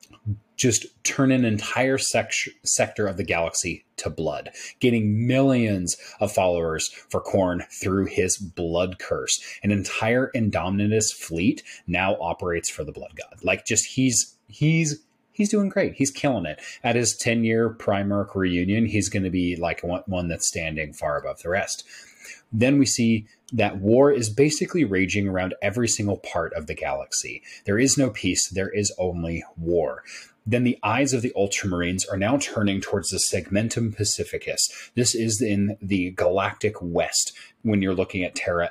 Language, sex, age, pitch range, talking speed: English, male, 30-49, 95-120 Hz, 165 wpm